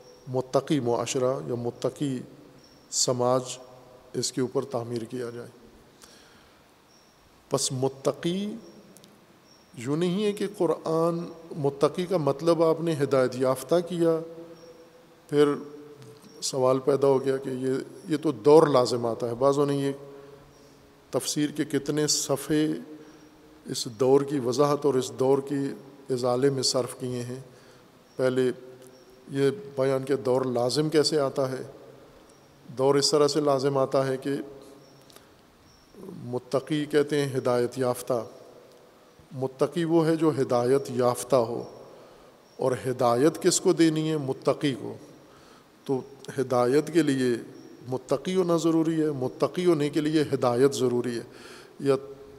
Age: 50-69